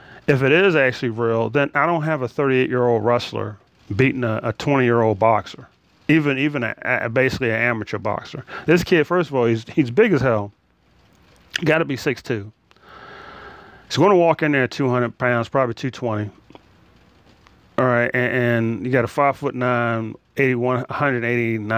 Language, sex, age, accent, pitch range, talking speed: English, male, 30-49, American, 115-145 Hz, 165 wpm